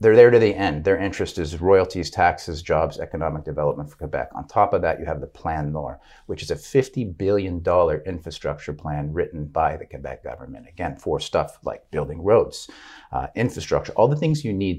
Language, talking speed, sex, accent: English, 205 wpm, male, American